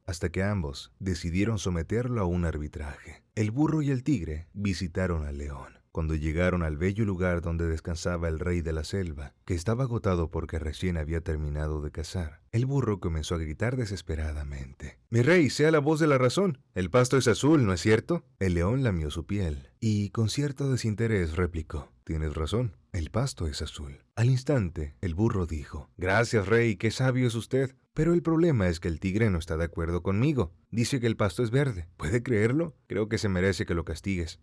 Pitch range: 85-120 Hz